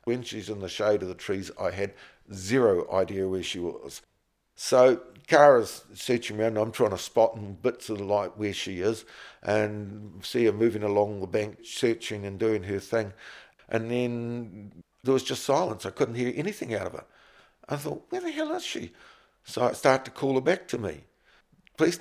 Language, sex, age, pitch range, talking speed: English, male, 50-69, 100-130 Hz, 200 wpm